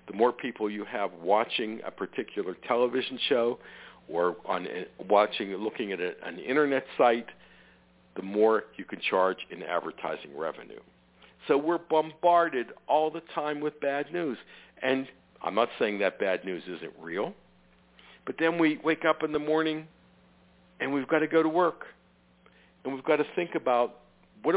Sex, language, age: male, English, 60-79